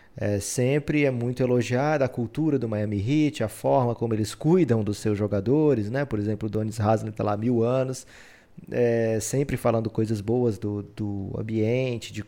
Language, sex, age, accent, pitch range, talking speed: Portuguese, male, 20-39, Brazilian, 110-135 Hz, 185 wpm